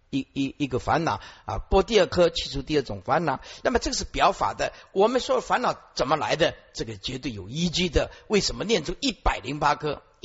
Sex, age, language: male, 50-69, Chinese